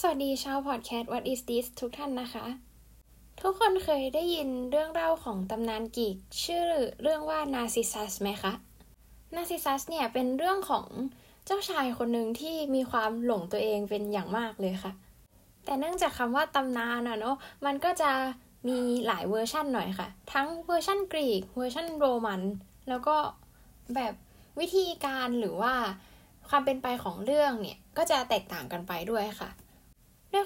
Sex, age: female, 10-29